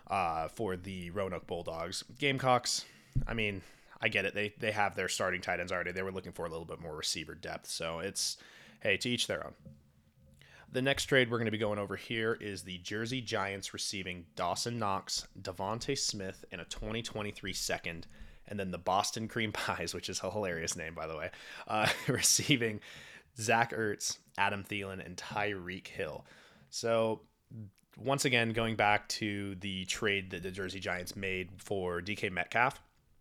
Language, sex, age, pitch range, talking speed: English, male, 20-39, 90-110 Hz, 180 wpm